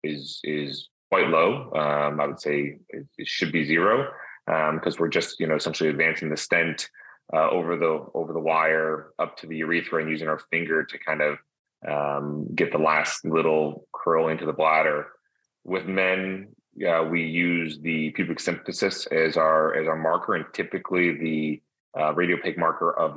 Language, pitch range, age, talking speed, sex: English, 75-85 Hz, 30-49, 180 wpm, male